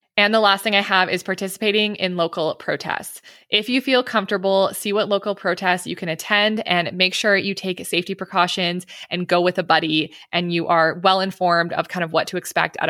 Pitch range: 170-195 Hz